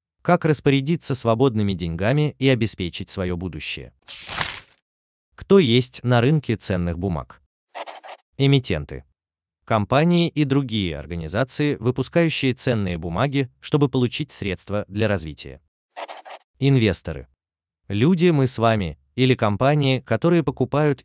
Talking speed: 105 wpm